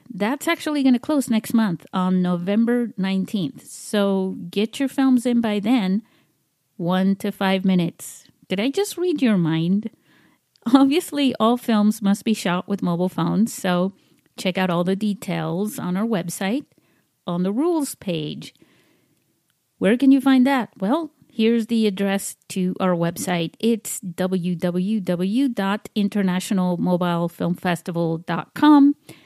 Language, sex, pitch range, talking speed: English, female, 180-230 Hz, 130 wpm